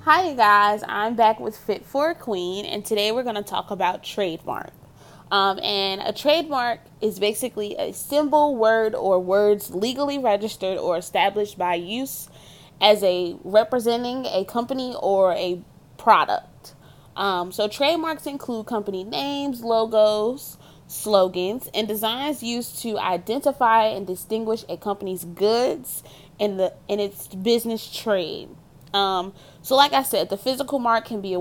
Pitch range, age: 180-230 Hz, 20-39